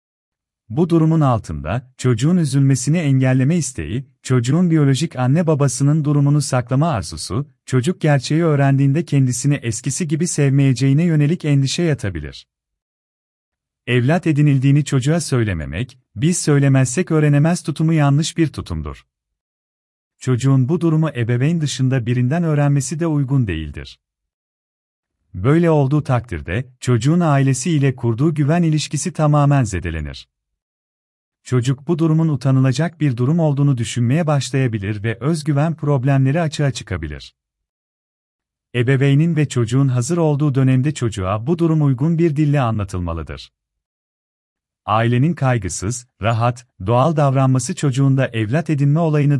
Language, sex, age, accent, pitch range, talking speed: Turkish, male, 40-59, native, 110-150 Hz, 110 wpm